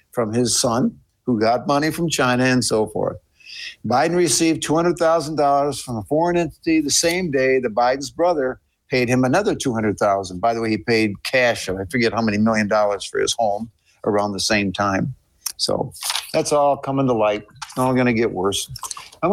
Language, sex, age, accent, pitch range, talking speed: English, male, 60-79, American, 115-155 Hz, 185 wpm